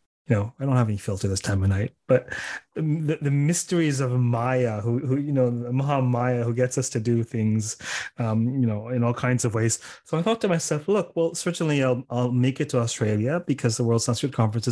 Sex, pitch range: male, 120-170 Hz